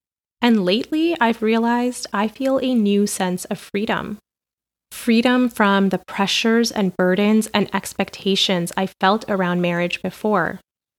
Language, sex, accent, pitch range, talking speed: English, female, American, 180-220 Hz, 130 wpm